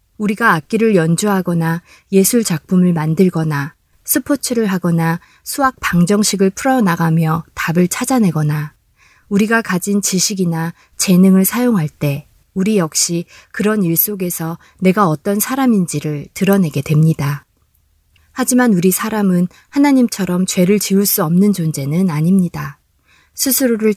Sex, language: female, Korean